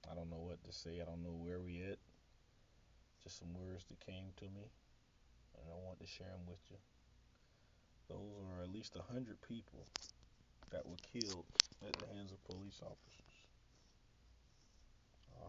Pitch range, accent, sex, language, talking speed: 85-100 Hz, American, male, English, 170 wpm